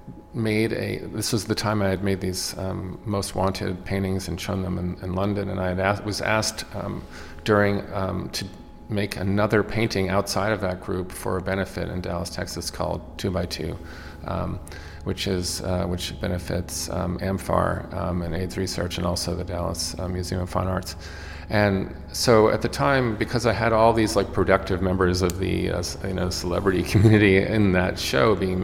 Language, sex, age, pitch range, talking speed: English, male, 40-59, 90-100 Hz, 195 wpm